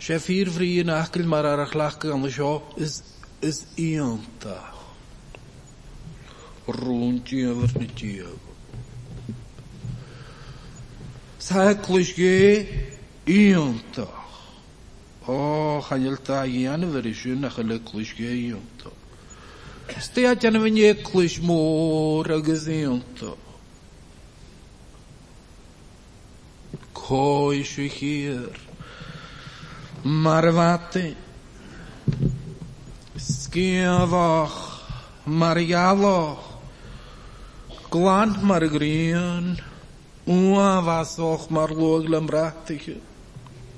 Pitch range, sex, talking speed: 130-165 Hz, male, 40 wpm